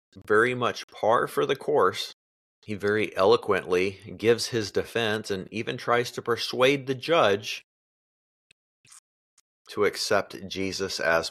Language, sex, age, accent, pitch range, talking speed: English, male, 30-49, American, 95-130 Hz, 120 wpm